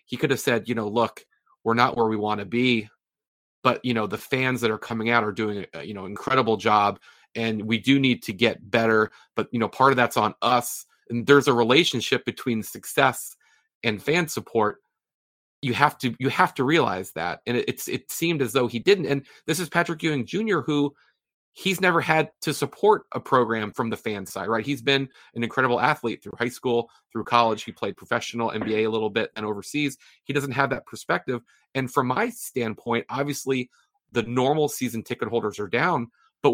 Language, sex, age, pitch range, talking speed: English, male, 30-49, 115-150 Hz, 210 wpm